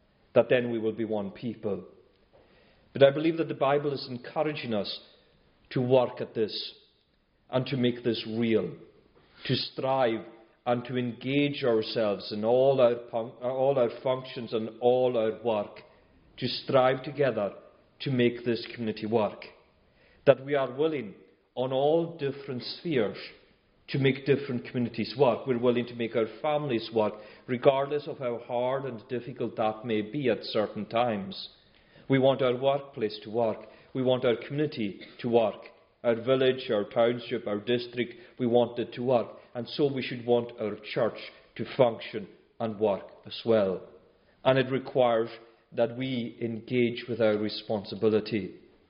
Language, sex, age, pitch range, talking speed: English, male, 40-59, 115-130 Hz, 155 wpm